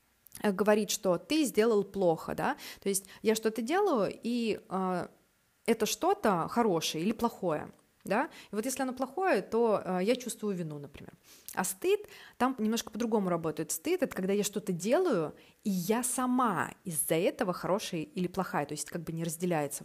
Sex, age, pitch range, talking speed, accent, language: female, 20-39, 175-225 Hz, 165 wpm, native, Russian